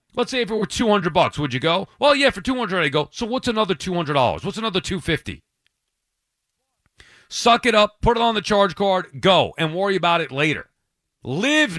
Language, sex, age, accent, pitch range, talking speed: English, male, 40-59, American, 150-210 Hz, 200 wpm